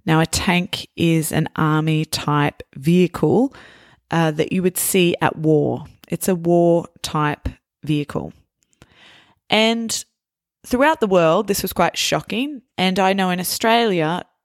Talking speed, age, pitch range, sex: 130 wpm, 20-39, 150-180 Hz, female